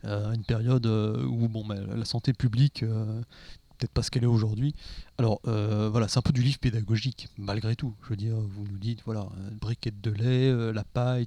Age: 30-49